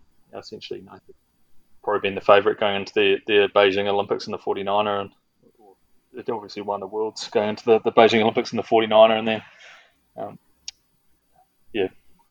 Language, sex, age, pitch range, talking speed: English, male, 20-39, 100-130 Hz, 170 wpm